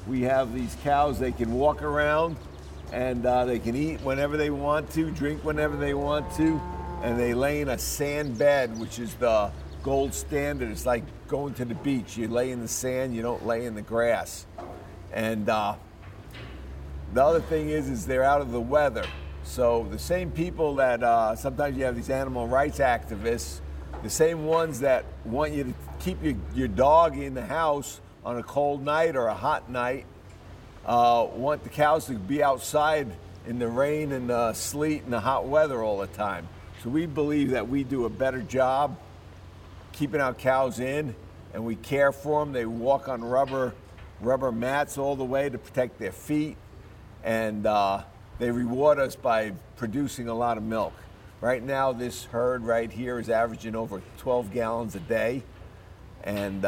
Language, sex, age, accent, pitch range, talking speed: English, male, 50-69, American, 110-145 Hz, 185 wpm